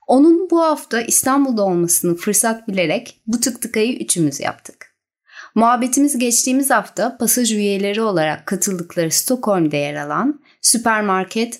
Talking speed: 120 wpm